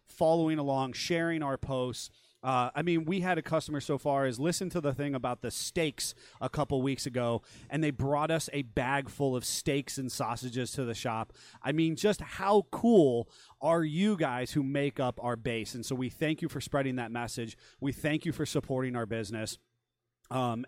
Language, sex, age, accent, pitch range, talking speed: English, male, 30-49, American, 125-165 Hz, 205 wpm